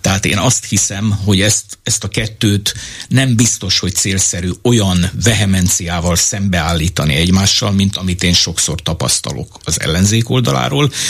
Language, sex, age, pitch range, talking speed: Hungarian, male, 60-79, 90-105 Hz, 135 wpm